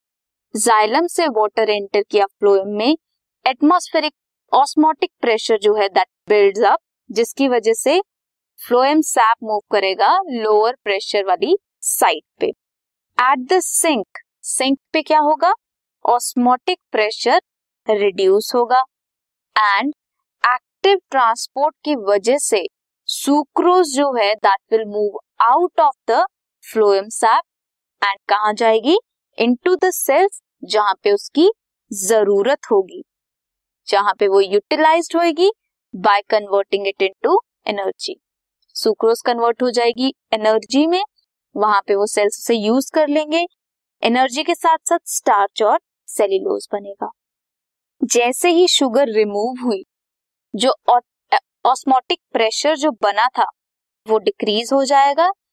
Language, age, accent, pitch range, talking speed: Hindi, 20-39, native, 215-330 Hz, 120 wpm